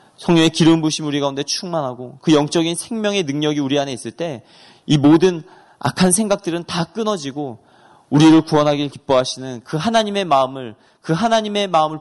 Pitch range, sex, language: 125-170 Hz, male, Korean